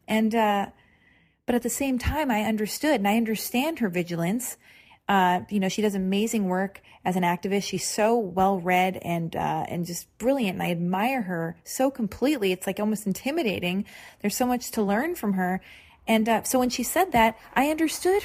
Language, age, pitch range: English, 30-49, 195-250 Hz